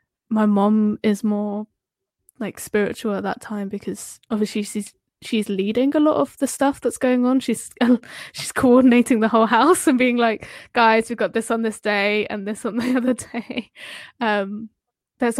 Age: 10-29